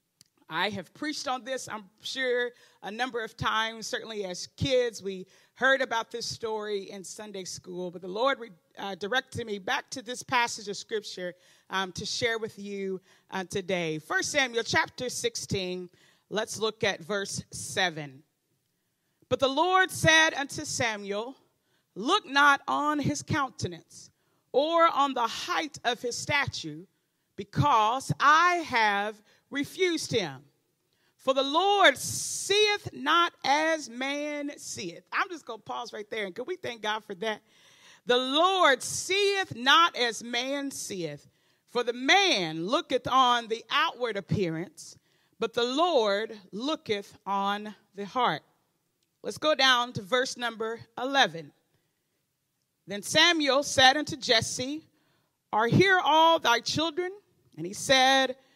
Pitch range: 185-275 Hz